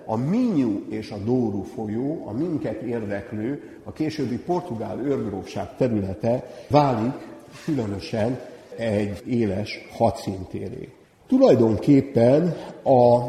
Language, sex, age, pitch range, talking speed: Hungarian, male, 60-79, 105-140 Hz, 95 wpm